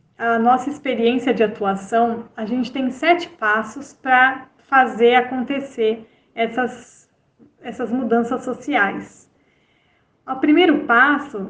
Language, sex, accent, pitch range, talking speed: Portuguese, female, Brazilian, 225-275 Hz, 105 wpm